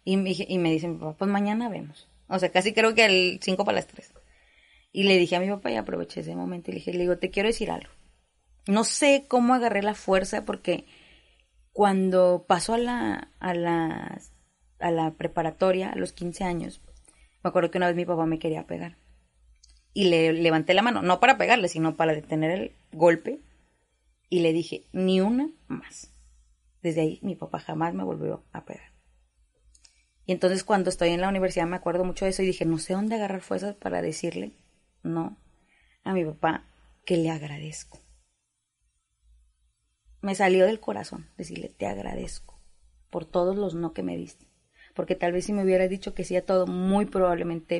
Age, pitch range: 20-39, 155-190 Hz